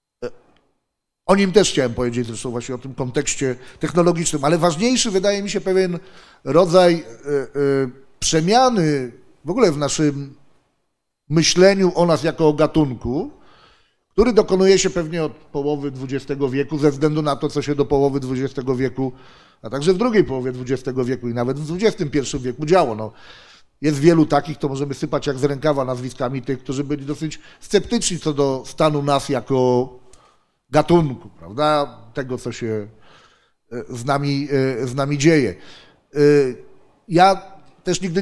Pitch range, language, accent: 135-170 Hz, Polish, native